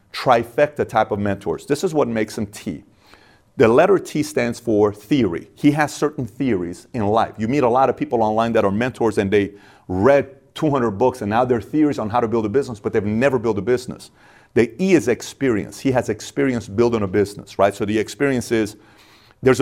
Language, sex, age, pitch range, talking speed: English, male, 40-59, 105-135 Hz, 210 wpm